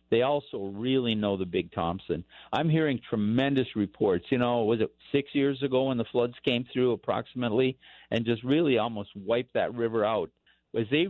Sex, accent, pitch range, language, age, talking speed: male, American, 110-130 Hz, English, 50-69, 185 wpm